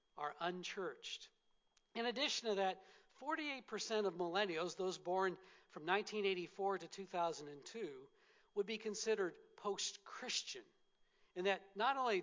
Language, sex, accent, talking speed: English, male, American, 115 wpm